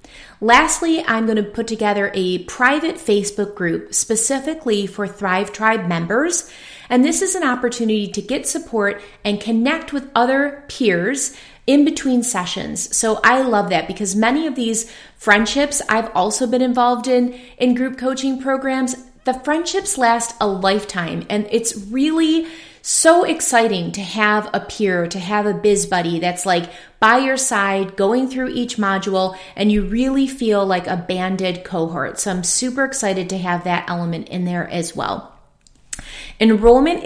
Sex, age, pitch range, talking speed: female, 30-49, 195-260 Hz, 160 wpm